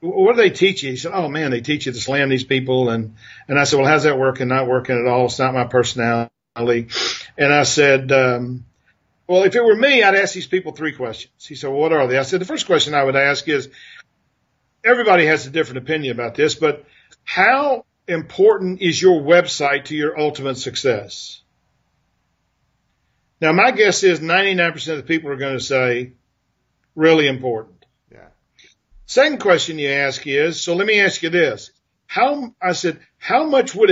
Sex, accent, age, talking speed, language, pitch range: male, American, 50-69, 195 wpm, English, 130-185 Hz